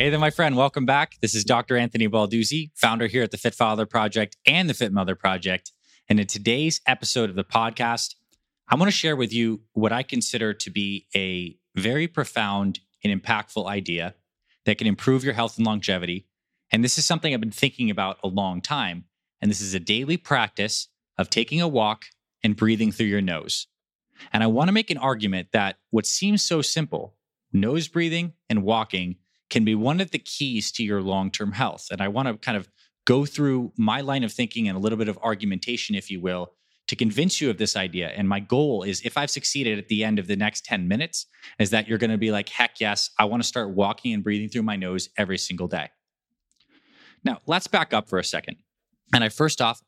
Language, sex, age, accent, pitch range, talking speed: English, male, 20-39, American, 100-135 Hz, 220 wpm